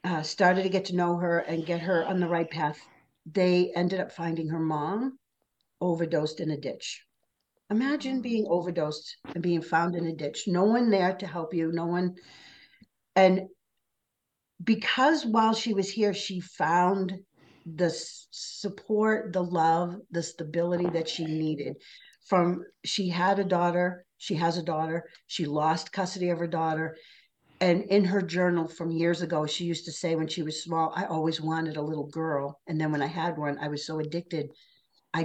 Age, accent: 50-69, American